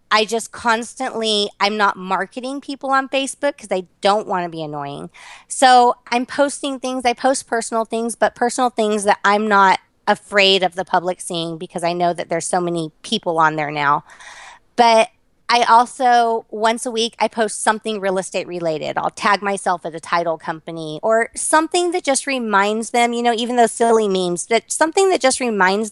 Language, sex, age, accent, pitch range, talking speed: English, female, 30-49, American, 185-240 Hz, 190 wpm